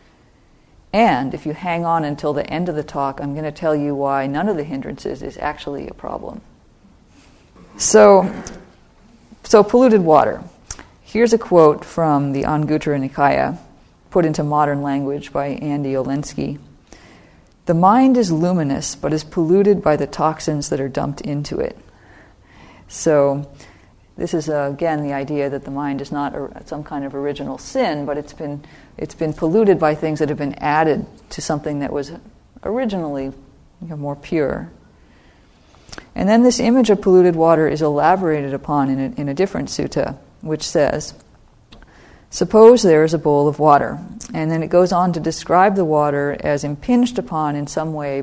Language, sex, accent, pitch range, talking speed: English, female, American, 145-175 Hz, 165 wpm